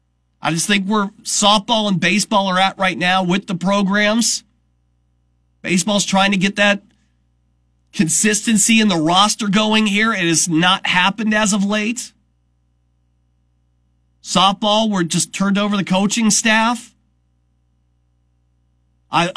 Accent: American